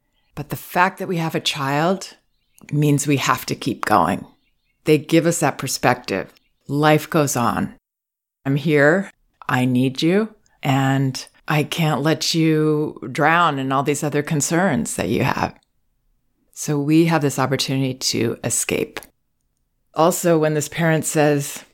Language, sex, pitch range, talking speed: English, female, 135-175 Hz, 145 wpm